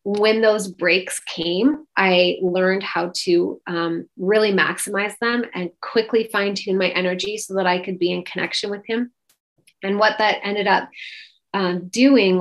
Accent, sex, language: American, female, English